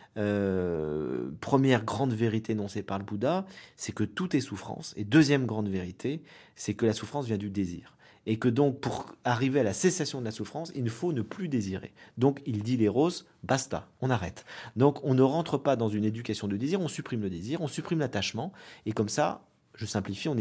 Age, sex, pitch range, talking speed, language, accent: 40-59, male, 105-145 Hz, 210 wpm, French, French